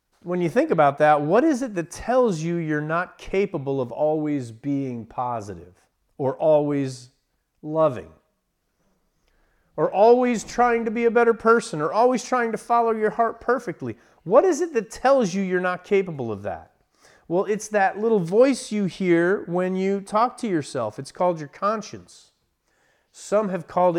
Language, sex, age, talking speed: English, male, 40-59, 170 wpm